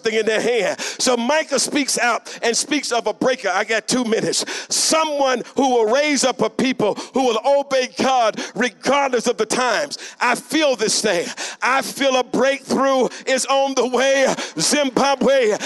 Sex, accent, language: male, American, English